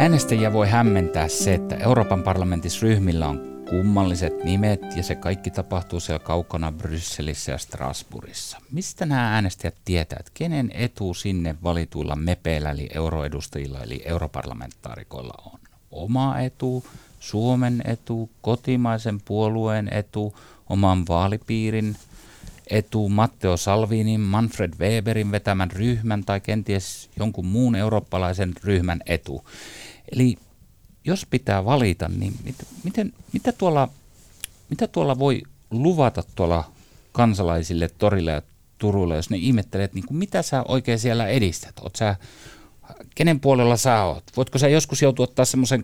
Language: Finnish